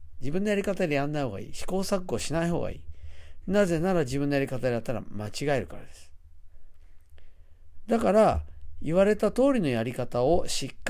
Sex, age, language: male, 50-69, Japanese